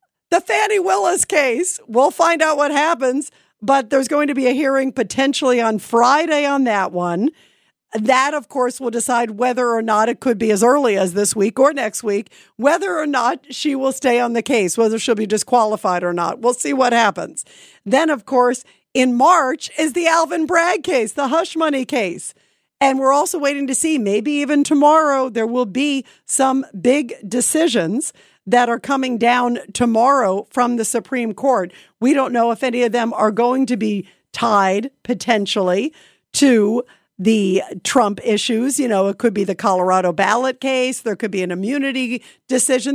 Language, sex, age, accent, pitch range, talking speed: English, female, 50-69, American, 220-280 Hz, 180 wpm